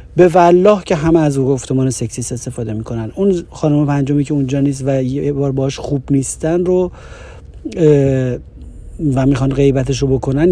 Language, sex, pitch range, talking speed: Persian, male, 110-145 Hz, 160 wpm